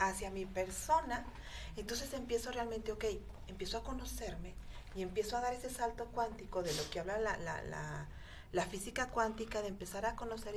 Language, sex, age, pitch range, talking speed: Spanish, female, 40-59, 175-225 Hz, 175 wpm